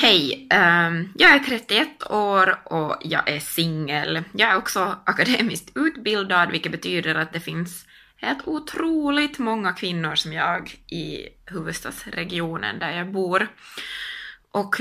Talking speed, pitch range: 125 wpm, 170-255 Hz